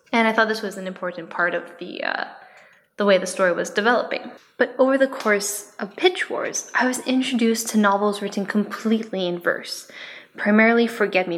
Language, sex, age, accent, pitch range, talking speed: English, female, 10-29, American, 185-240 Hz, 190 wpm